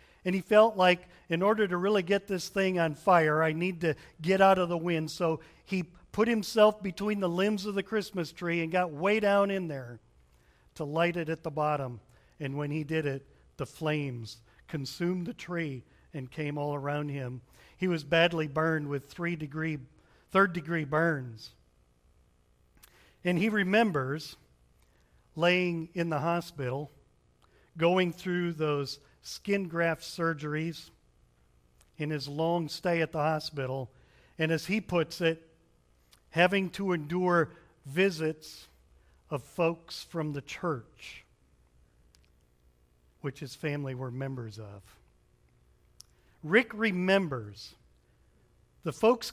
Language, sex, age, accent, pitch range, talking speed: English, male, 50-69, American, 130-180 Hz, 135 wpm